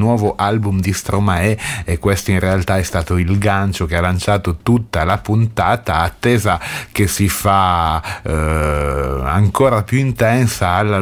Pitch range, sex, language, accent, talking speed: 85-110 Hz, male, Italian, native, 145 wpm